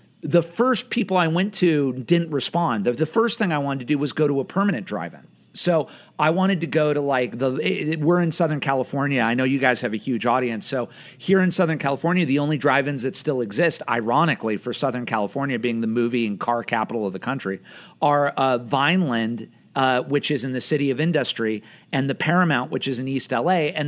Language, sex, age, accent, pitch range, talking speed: English, male, 40-59, American, 130-170 Hz, 215 wpm